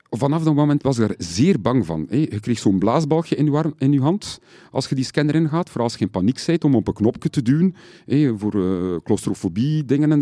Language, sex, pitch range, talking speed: Dutch, male, 100-150 Hz, 240 wpm